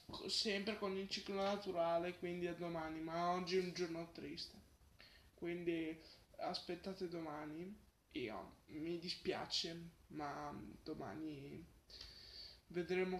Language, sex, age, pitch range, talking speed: Italian, male, 20-39, 170-210 Hz, 105 wpm